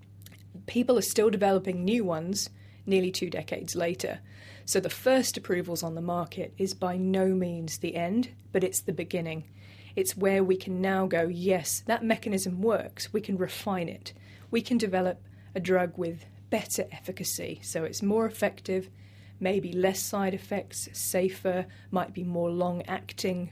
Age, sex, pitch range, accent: 20-39, female, 145-190 Hz, British